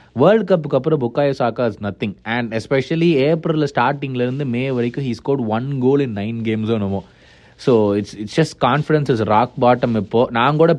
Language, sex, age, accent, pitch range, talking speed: Tamil, male, 20-39, native, 100-130 Hz, 170 wpm